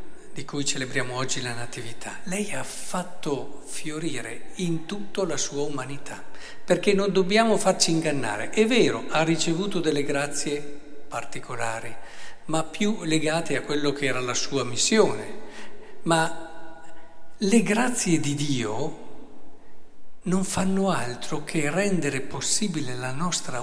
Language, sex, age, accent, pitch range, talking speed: Italian, male, 50-69, native, 125-175 Hz, 125 wpm